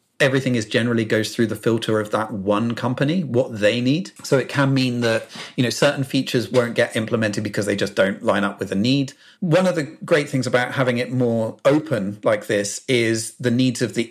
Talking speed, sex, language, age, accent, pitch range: 220 wpm, male, English, 40-59, British, 105-125 Hz